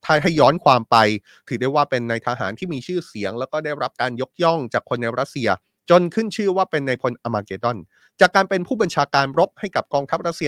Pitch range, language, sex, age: 125-165 Hz, Thai, male, 20-39